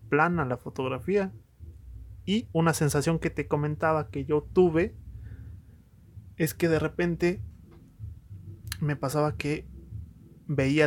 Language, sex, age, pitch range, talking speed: Spanish, male, 20-39, 115-160 Hz, 110 wpm